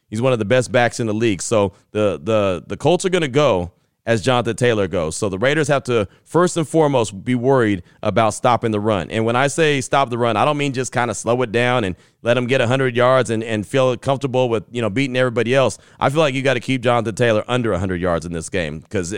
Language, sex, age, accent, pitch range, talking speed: English, male, 30-49, American, 115-140 Hz, 265 wpm